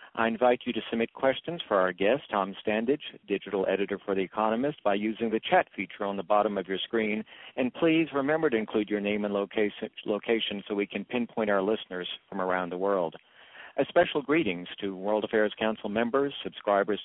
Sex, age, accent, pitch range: male, 50-69, American, 100-120 Hz